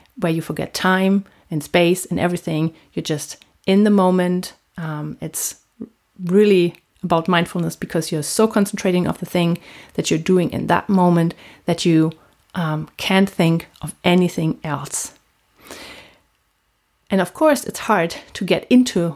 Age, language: 30-49, English